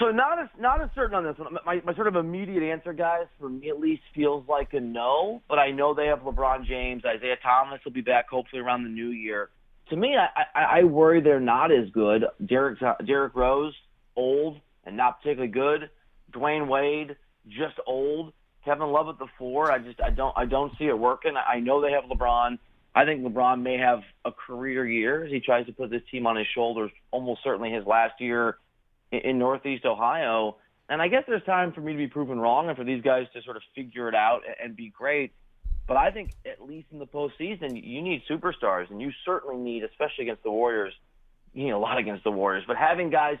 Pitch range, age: 120-150 Hz, 30-49